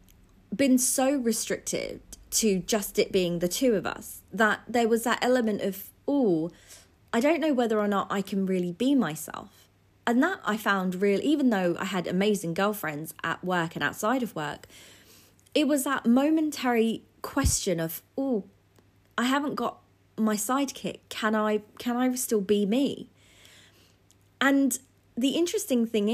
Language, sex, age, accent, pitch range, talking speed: English, female, 20-39, British, 175-245 Hz, 160 wpm